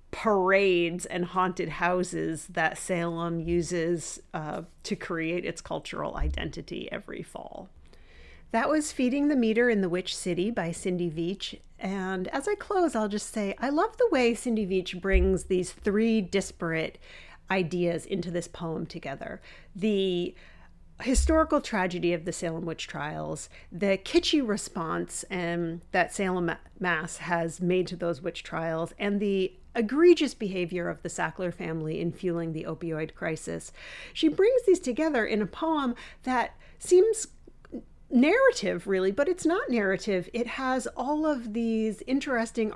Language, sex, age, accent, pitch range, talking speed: English, female, 40-59, American, 170-235 Hz, 145 wpm